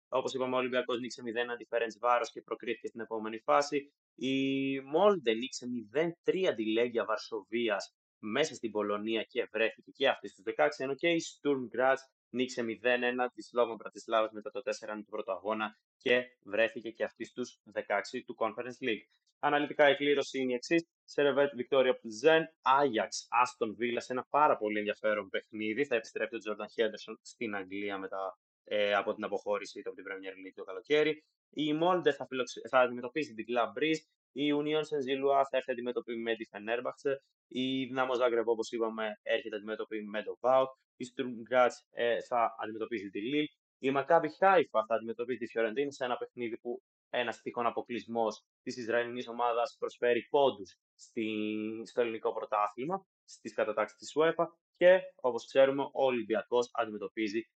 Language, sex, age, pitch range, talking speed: Greek, male, 20-39, 115-145 Hz, 145 wpm